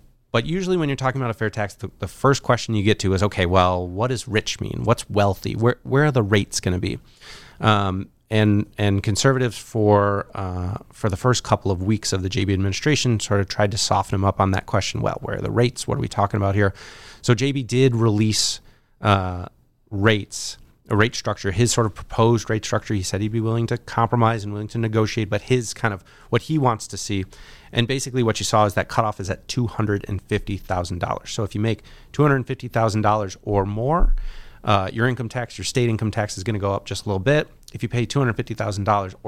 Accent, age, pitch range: American, 30-49, 100-120 Hz